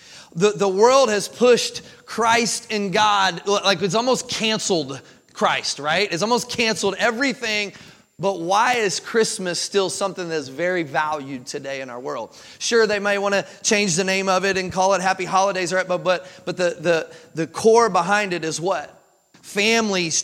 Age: 30-49